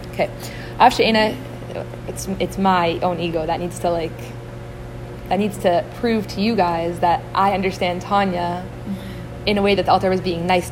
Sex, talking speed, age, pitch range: female, 170 wpm, 20-39, 190-240 Hz